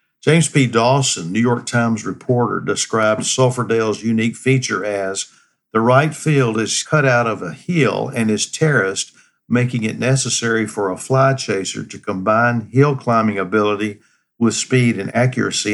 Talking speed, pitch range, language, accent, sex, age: 155 wpm, 110-130 Hz, English, American, male, 50-69